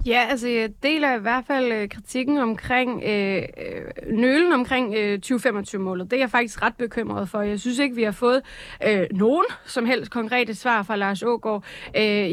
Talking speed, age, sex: 180 wpm, 30-49, female